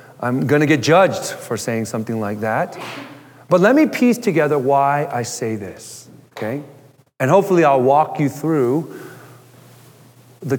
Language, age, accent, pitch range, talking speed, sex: English, 40-59, American, 150-255 Hz, 155 wpm, male